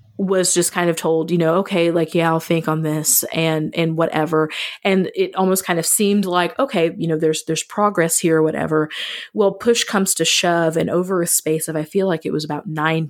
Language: English